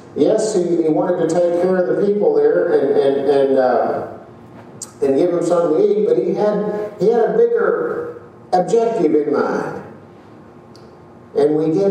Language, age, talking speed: English, 50-69, 170 wpm